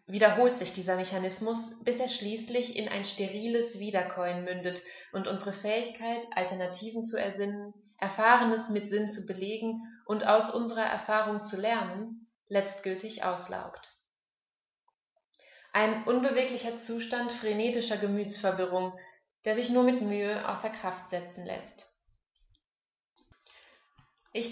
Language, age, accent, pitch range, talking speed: German, 20-39, German, 185-230 Hz, 115 wpm